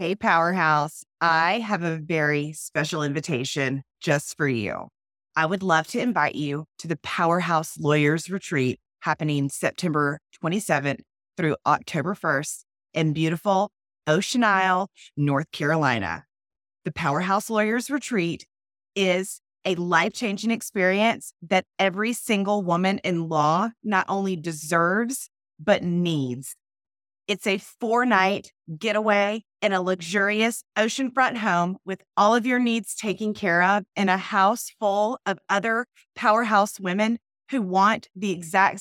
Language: English